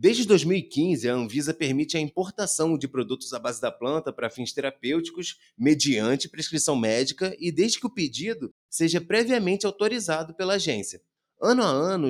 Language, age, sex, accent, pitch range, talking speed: Portuguese, 20-39, male, Brazilian, 135-195 Hz, 160 wpm